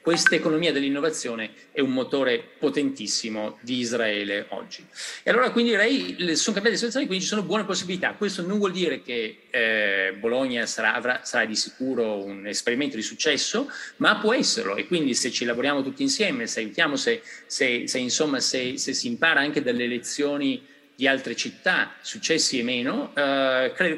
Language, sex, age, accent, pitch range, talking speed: Italian, male, 30-49, native, 110-185 Hz, 175 wpm